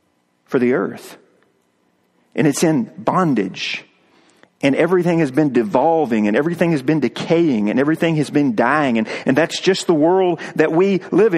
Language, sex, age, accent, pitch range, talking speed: English, male, 40-59, American, 175-220 Hz, 165 wpm